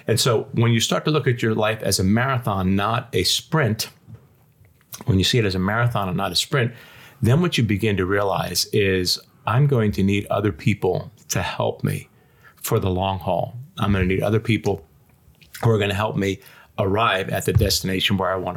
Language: English